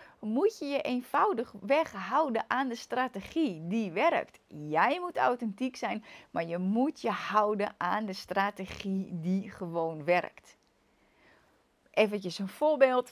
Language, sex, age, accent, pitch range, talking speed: Dutch, female, 30-49, Dutch, 175-245 Hz, 135 wpm